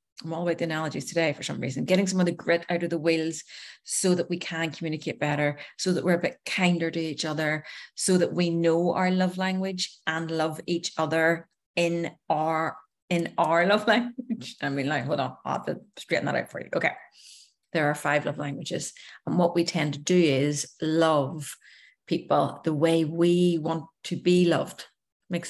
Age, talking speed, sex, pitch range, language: 30-49, 200 wpm, female, 155-180 Hz, English